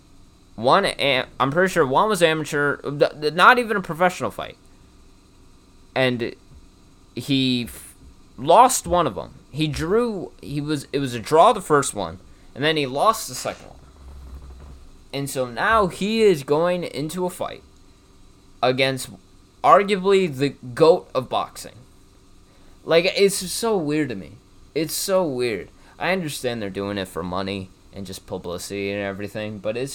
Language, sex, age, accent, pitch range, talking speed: English, male, 20-39, American, 95-150 Hz, 155 wpm